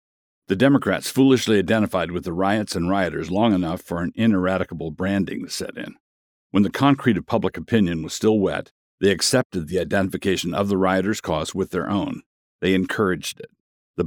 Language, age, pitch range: English, 50-69, 90-110 Hz